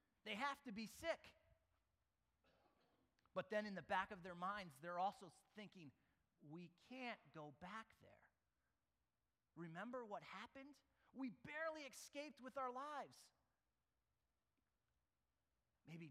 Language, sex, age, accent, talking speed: English, male, 30-49, American, 115 wpm